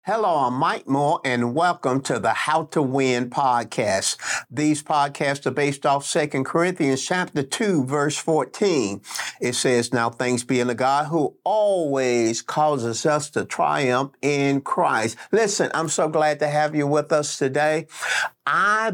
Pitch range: 130-155 Hz